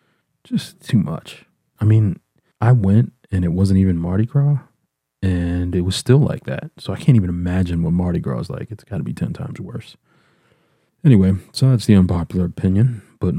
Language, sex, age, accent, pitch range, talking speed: English, male, 40-59, American, 90-115 Hz, 195 wpm